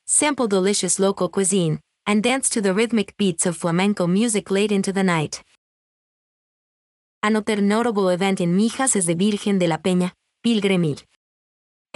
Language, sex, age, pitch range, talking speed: English, female, 30-49, 180-225 Hz, 145 wpm